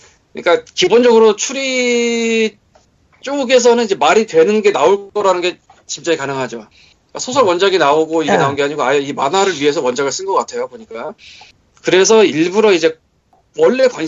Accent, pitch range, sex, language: native, 160-260 Hz, male, Korean